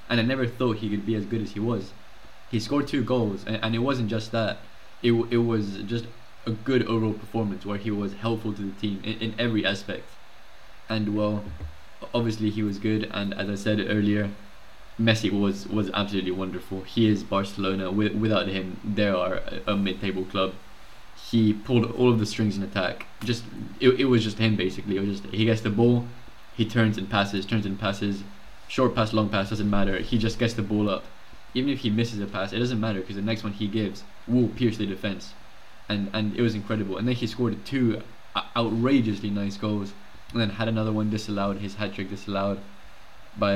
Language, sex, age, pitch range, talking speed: English, male, 20-39, 100-115 Hz, 210 wpm